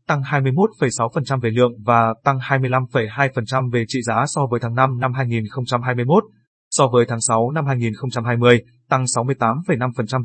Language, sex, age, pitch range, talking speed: Vietnamese, male, 20-39, 125-145 Hz, 140 wpm